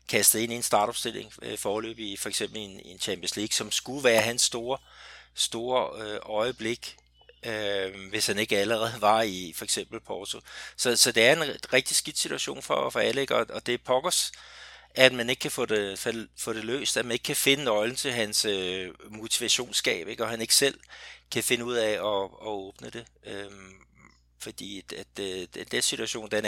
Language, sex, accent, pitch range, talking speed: Danish, male, native, 105-130 Hz, 190 wpm